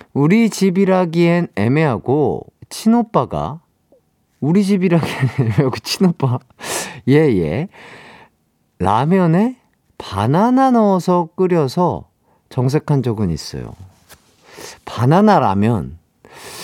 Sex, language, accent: male, Korean, native